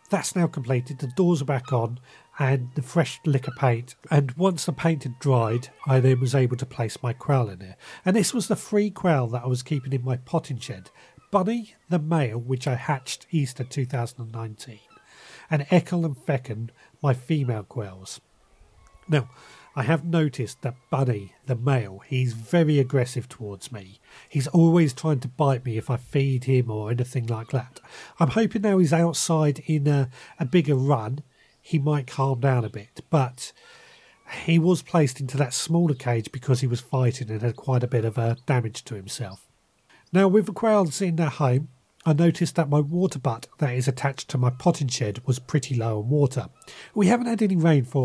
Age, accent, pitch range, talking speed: 40-59, British, 125-165 Hz, 190 wpm